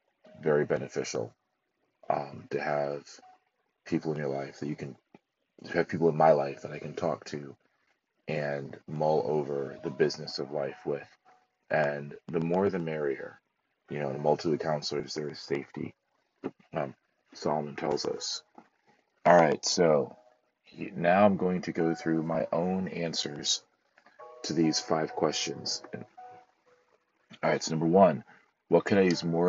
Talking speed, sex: 155 wpm, male